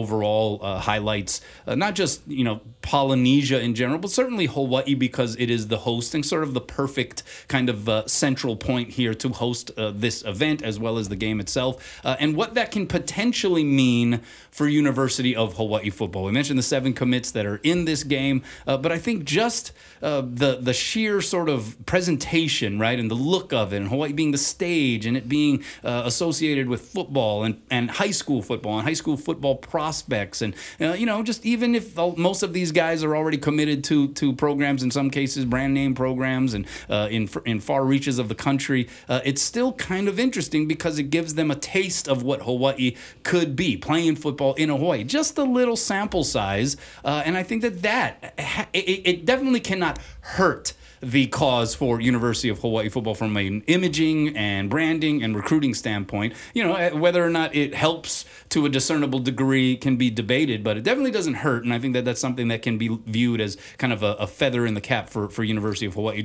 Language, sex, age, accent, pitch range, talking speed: English, male, 30-49, American, 115-160 Hz, 210 wpm